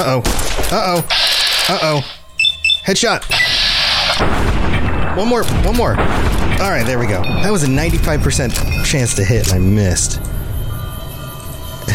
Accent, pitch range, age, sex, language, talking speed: American, 95-130 Hz, 30-49, male, English, 120 wpm